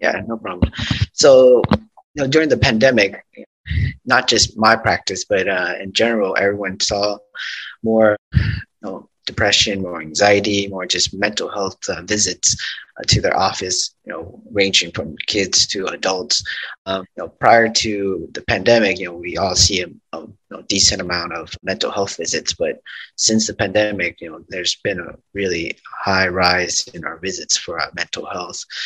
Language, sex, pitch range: English, male, 95-115 Hz